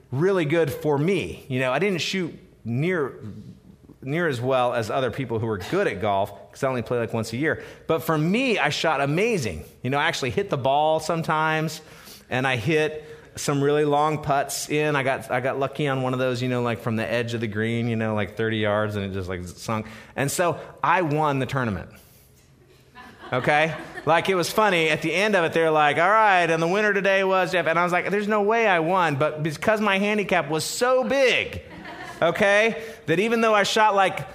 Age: 30-49